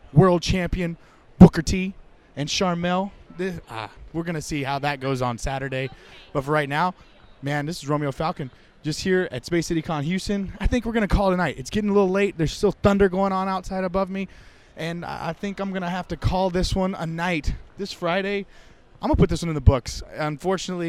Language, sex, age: English, male, 20-39